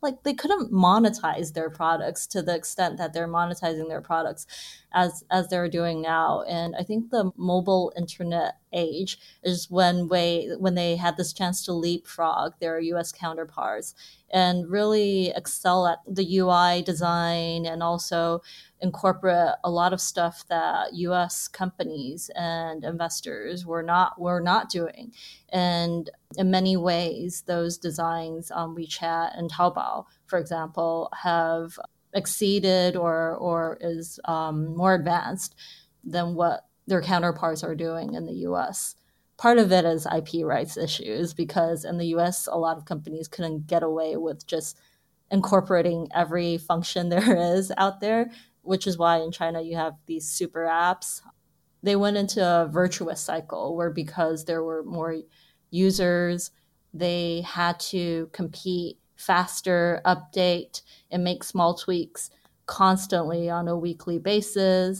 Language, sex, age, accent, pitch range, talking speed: English, female, 20-39, American, 165-180 Hz, 145 wpm